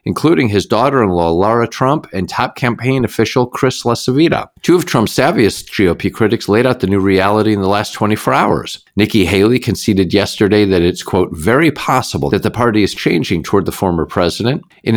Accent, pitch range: American, 95-125 Hz